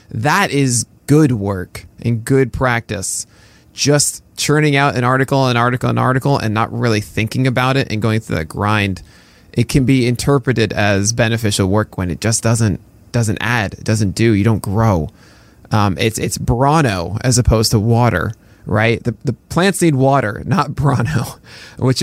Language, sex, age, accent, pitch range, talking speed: English, male, 20-39, American, 110-135 Hz, 170 wpm